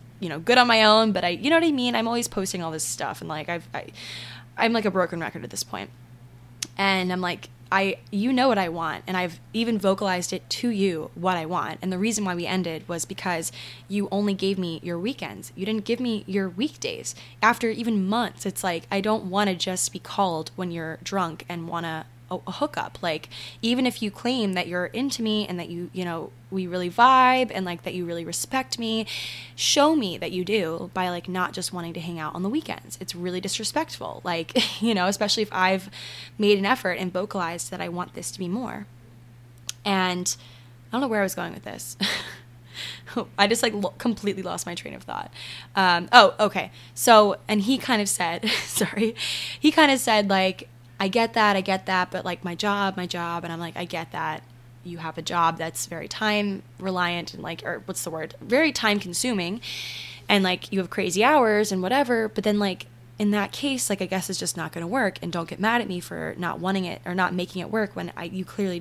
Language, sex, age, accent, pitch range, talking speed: English, female, 10-29, American, 170-215 Hz, 225 wpm